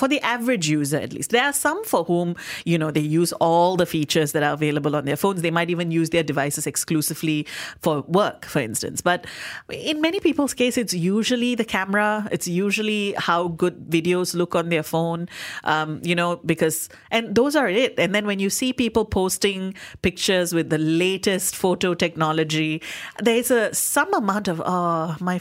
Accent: Indian